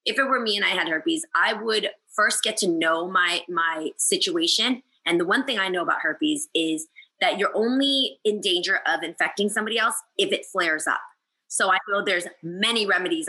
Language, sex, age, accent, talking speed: English, female, 20-39, American, 205 wpm